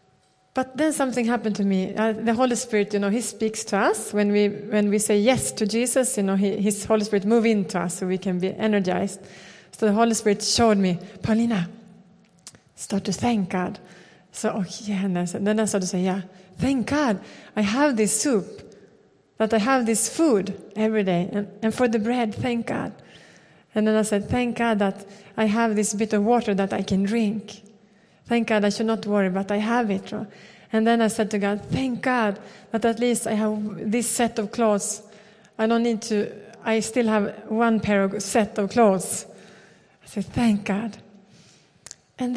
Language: English